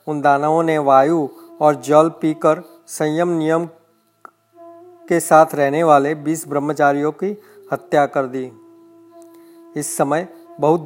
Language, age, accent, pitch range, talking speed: Hindi, 40-59, native, 150-175 Hz, 115 wpm